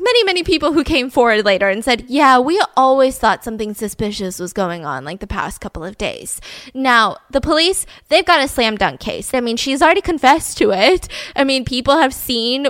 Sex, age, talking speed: female, 10-29, 215 wpm